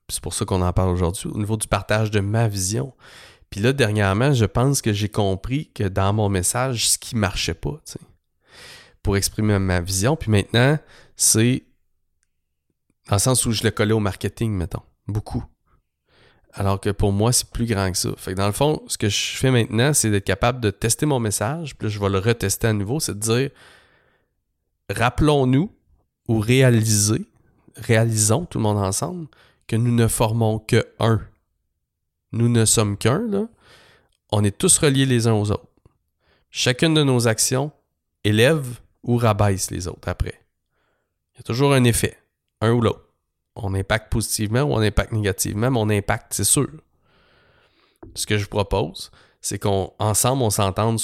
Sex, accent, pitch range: male, Canadian, 100-120 Hz